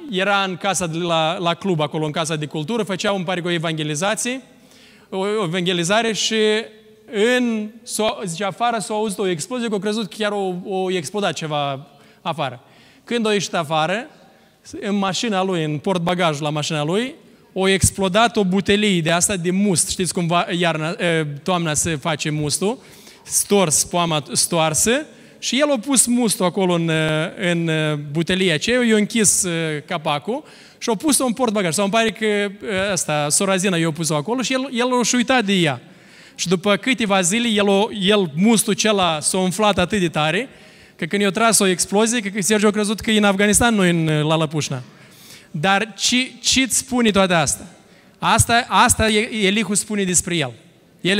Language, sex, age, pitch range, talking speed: Romanian, male, 20-39, 170-215 Hz, 170 wpm